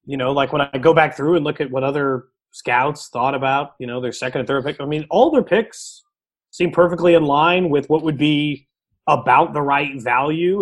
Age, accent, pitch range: 30-49, American, 125-160 Hz